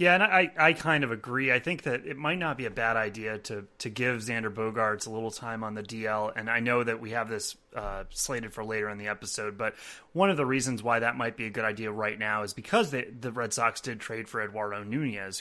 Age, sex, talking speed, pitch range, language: 30-49, male, 260 wpm, 115-160 Hz, English